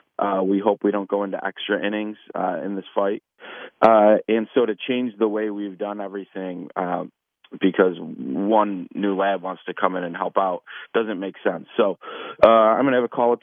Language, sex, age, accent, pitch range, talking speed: English, male, 30-49, American, 95-105 Hz, 210 wpm